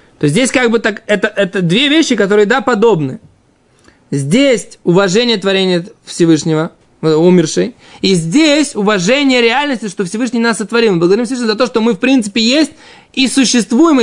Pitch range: 205-275 Hz